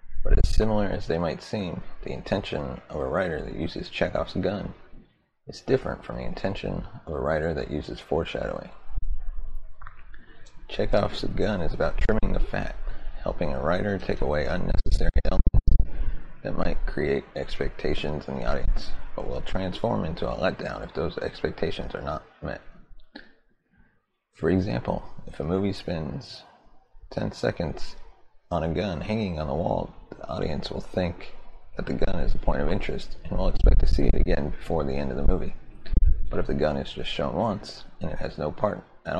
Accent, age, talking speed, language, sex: American, 30-49, 170 wpm, English, male